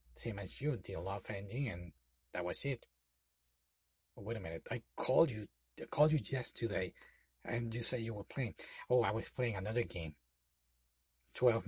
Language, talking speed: English, 175 wpm